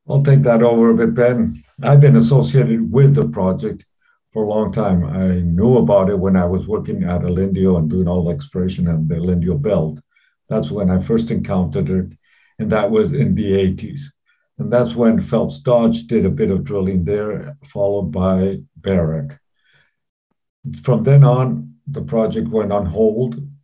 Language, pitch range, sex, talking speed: English, 90-140 Hz, male, 180 wpm